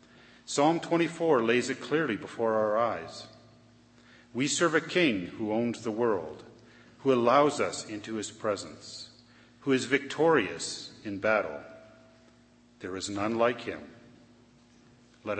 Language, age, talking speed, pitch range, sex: English, 50-69, 130 wpm, 105-140 Hz, male